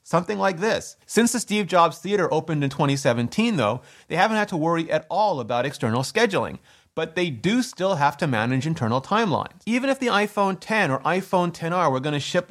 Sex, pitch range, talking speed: male, 155-205 Hz, 200 wpm